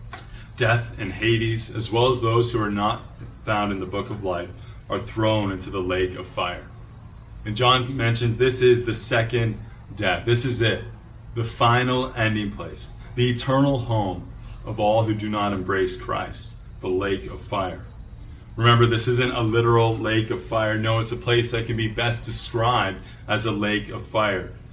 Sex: male